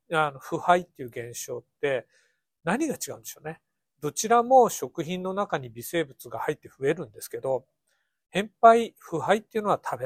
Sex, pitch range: male, 145-230 Hz